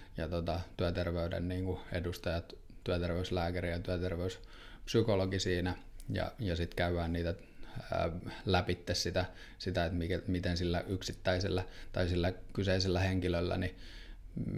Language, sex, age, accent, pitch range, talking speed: Finnish, male, 20-39, native, 85-95 Hz, 120 wpm